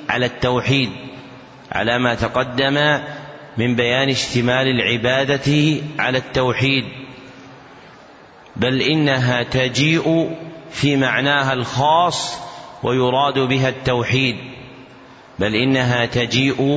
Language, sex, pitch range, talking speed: Arabic, male, 125-140 Hz, 80 wpm